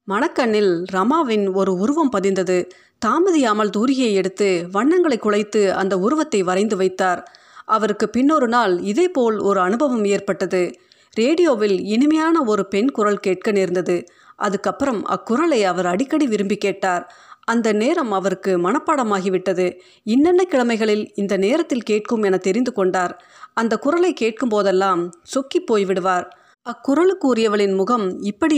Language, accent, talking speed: Tamil, native, 120 wpm